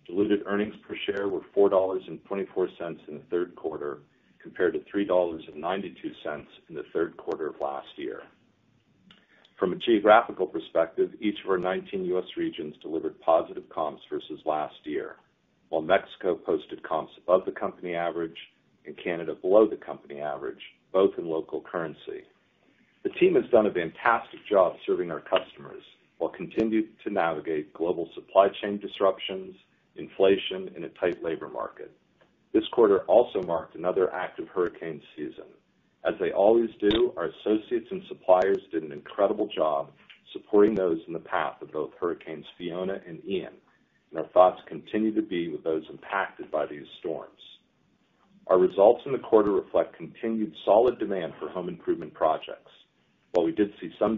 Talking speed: 155 wpm